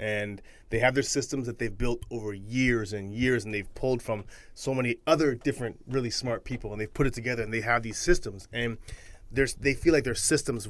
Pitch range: 115-145 Hz